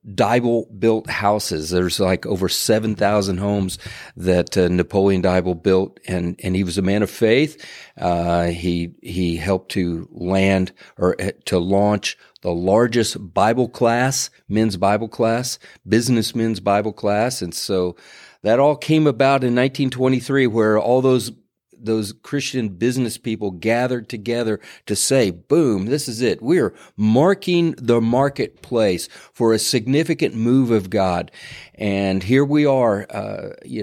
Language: English